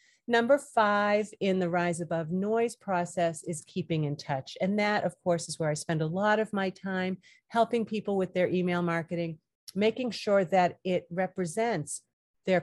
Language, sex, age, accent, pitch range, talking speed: English, female, 40-59, American, 160-200 Hz, 175 wpm